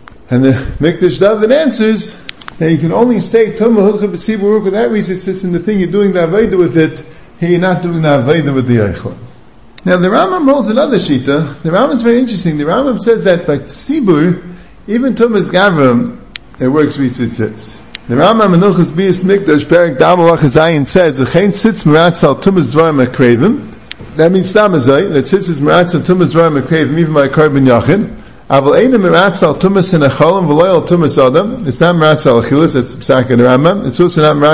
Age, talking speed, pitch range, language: 50-69, 155 wpm, 140-195 Hz, English